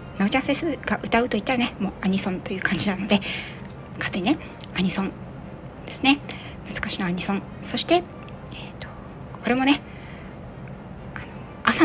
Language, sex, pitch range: Japanese, female, 190-255 Hz